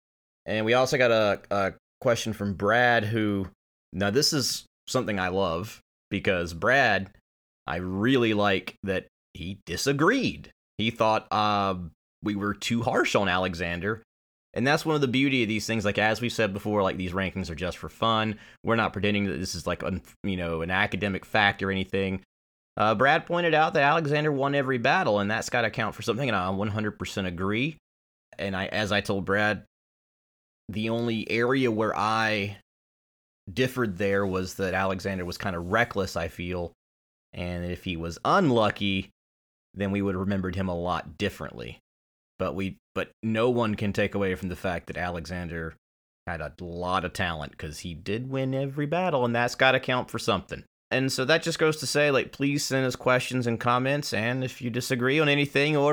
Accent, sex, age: American, male, 30-49